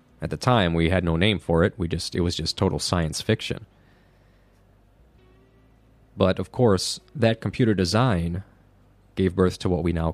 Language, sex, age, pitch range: Japanese, male, 30-49, 85-110 Hz